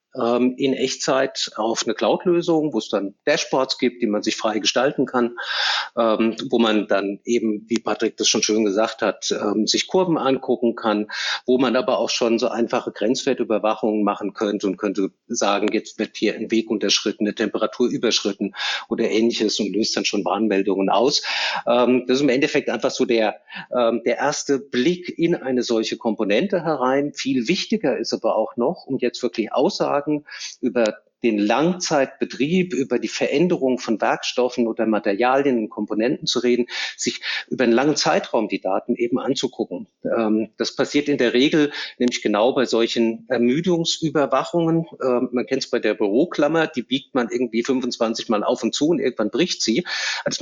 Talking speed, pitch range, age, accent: 165 wpm, 110-135 Hz, 50-69, German